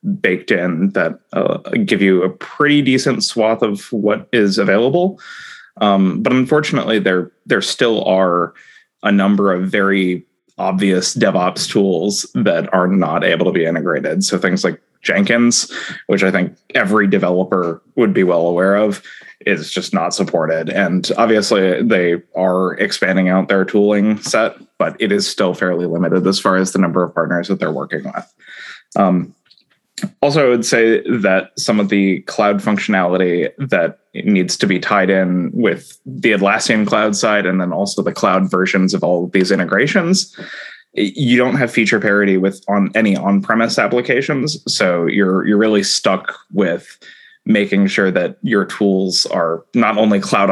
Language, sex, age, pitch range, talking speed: English, male, 20-39, 95-110 Hz, 165 wpm